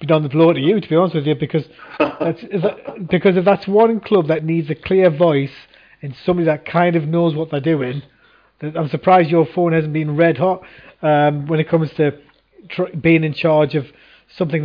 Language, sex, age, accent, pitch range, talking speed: English, male, 30-49, British, 150-180 Hz, 220 wpm